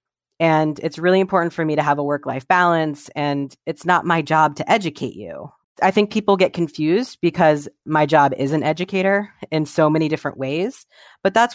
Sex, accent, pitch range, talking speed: female, American, 140-175 Hz, 190 wpm